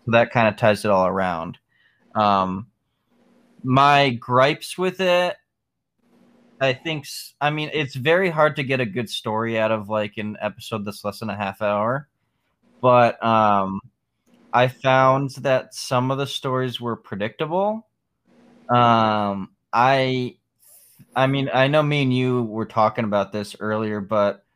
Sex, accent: male, American